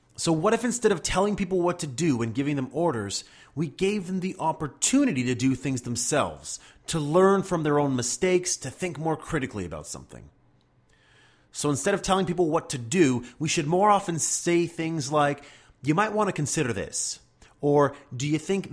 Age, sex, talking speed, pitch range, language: 30-49, male, 190 wpm, 125-180 Hz, English